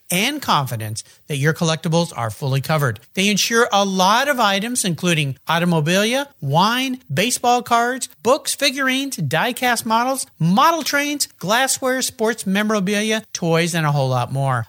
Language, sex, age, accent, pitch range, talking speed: English, male, 50-69, American, 150-240 Hz, 140 wpm